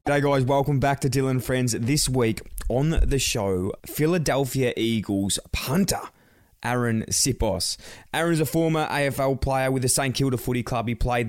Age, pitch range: 20-39, 95-125 Hz